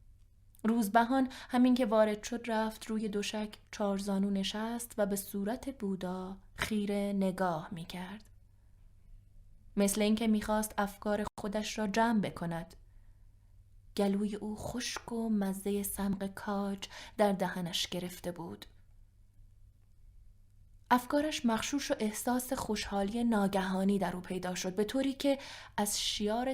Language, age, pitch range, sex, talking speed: Persian, 20-39, 185-220 Hz, female, 120 wpm